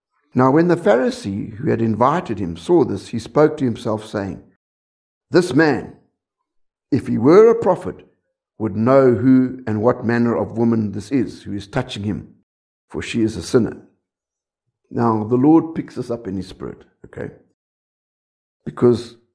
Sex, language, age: male, English, 60-79